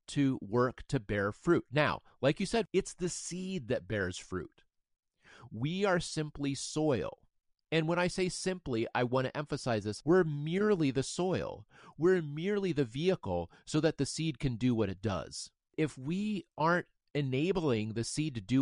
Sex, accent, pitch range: male, American, 135-180 Hz